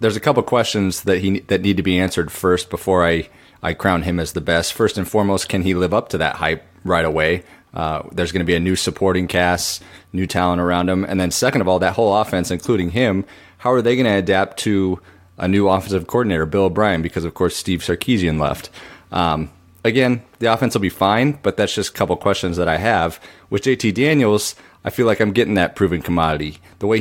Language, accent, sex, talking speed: English, American, male, 230 wpm